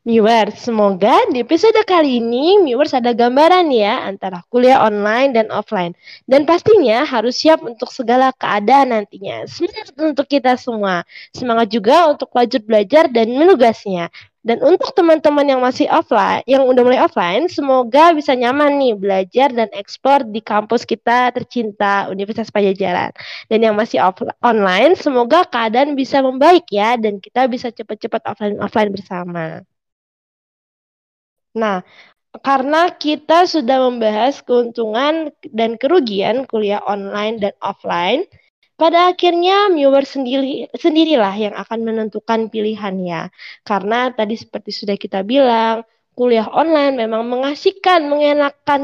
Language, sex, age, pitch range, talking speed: Indonesian, female, 20-39, 220-290 Hz, 130 wpm